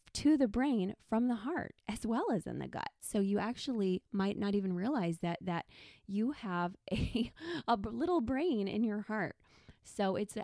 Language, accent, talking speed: English, American, 190 wpm